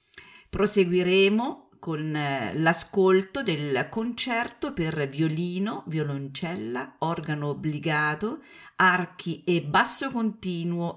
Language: Italian